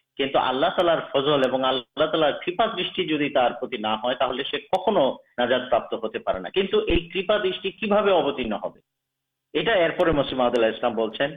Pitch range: 130-180 Hz